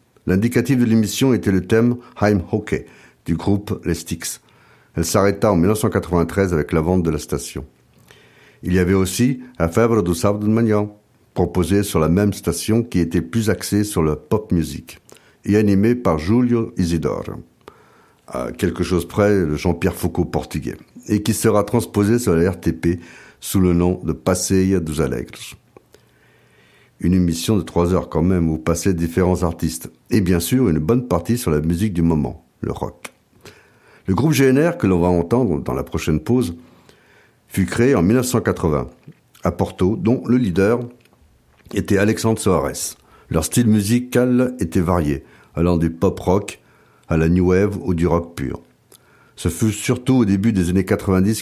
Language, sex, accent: French, male, French